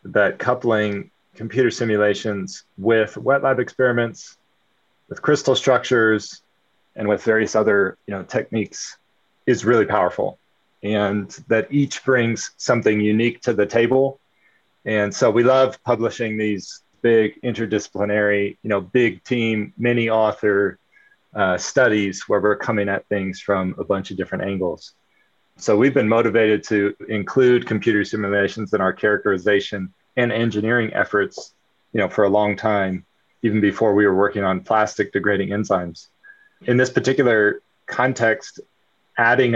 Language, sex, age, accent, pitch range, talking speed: English, male, 30-49, American, 105-120 Hz, 140 wpm